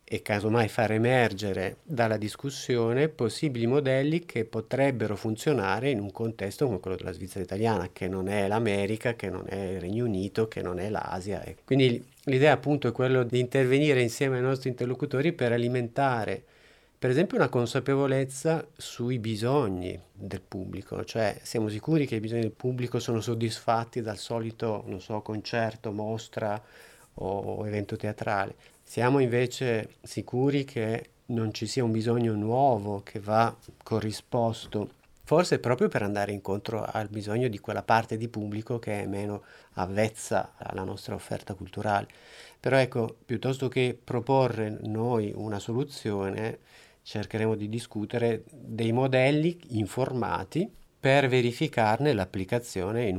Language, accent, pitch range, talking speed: Italian, native, 105-125 Hz, 140 wpm